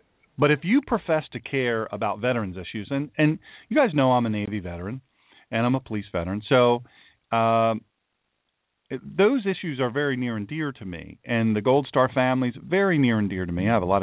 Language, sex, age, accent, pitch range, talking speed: English, male, 40-59, American, 100-135 Hz, 215 wpm